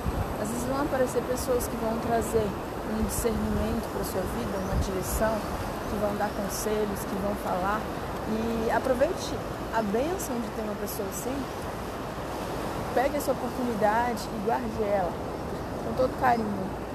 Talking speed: 135 wpm